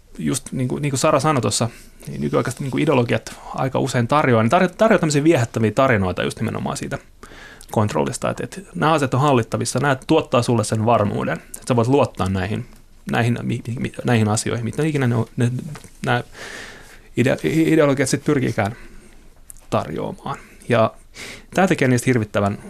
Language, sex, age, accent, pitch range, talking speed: Finnish, male, 30-49, native, 110-140 Hz, 155 wpm